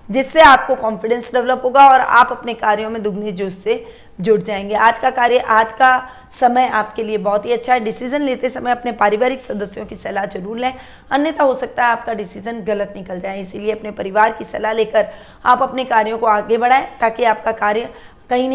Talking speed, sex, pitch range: 200 wpm, female, 215-260 Hz